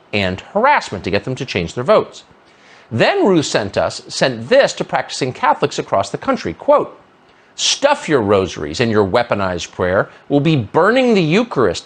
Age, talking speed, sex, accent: 50-69, 175 wpm, male, American